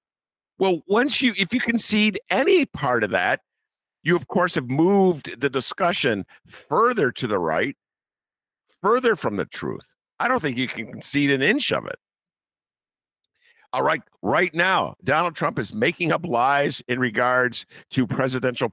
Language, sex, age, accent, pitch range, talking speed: English, male, 50-69, American, 125-195 Hz, 155 wpm